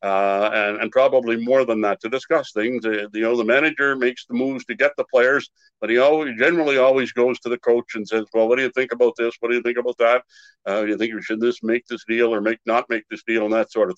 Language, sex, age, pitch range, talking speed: English, male, 60-79, 110-140 Hz, 285 wpm